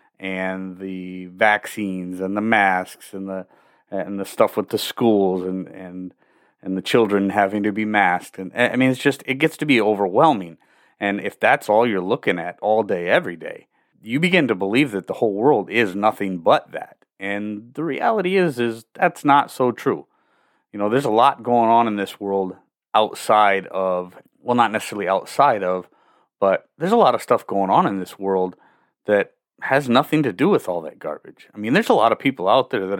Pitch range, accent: 95-120 Hz, American